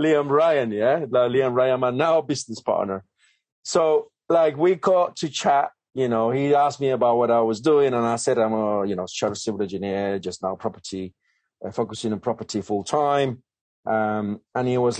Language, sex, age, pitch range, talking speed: English, male, 40-59, 115-155 Hz, 195 wpm